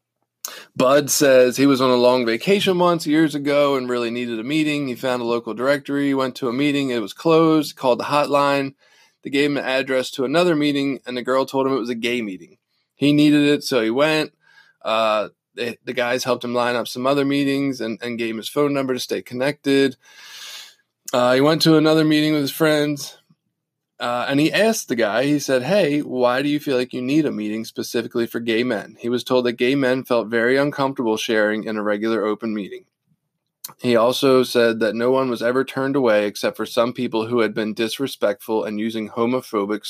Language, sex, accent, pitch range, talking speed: English, male, American, 120-145 Hz, 215 wpm